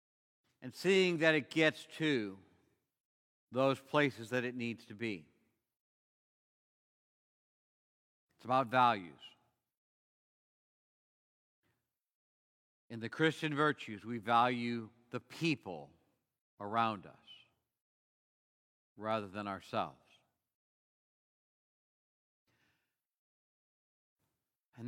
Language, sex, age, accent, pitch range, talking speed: English, male, 50-69, American, 115-155 Hz, 70 wpm